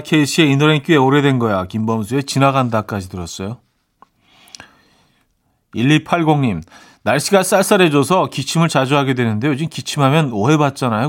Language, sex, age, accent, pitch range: Korean, male, 40-59, native, 120-160 Hz